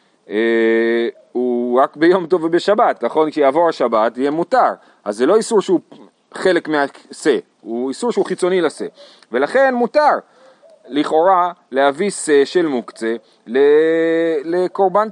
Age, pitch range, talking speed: 40-59, 155-205 Hz, 125 wpm